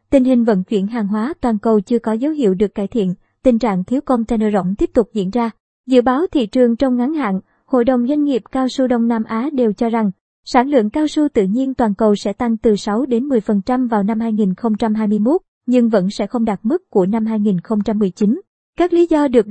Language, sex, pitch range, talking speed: Vietnamese, male, 215-260 Hz, 225 wpm